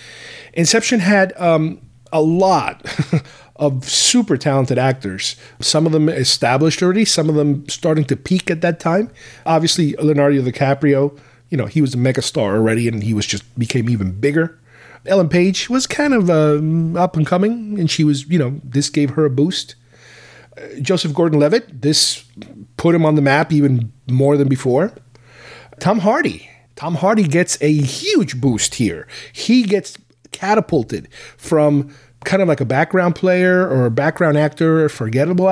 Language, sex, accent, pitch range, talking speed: English, male, American, 130-165 Hz, 170 wpm